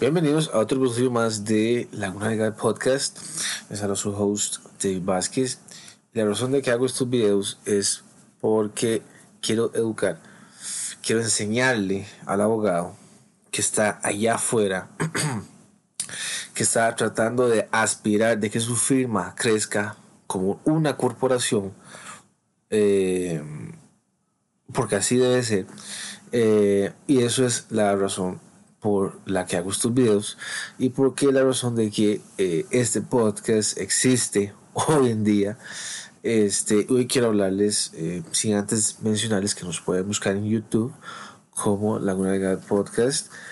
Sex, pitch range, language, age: male, 100-120 Hz, Spanish, 30-49